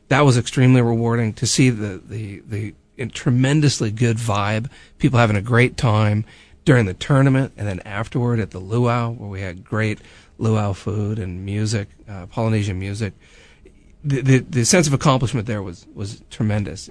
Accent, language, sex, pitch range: American, English, male, 100-120 Hz